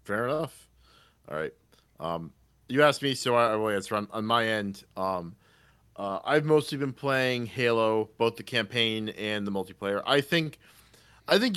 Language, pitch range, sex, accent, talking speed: English, 100-130 Hz, male, American, 170 wpm